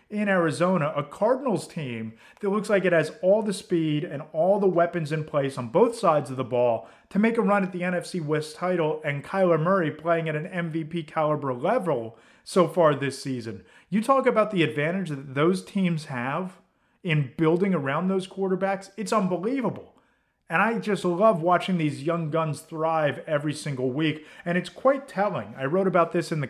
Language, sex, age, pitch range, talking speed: English, male, 30-49, 150-195 Hz, 190 wpm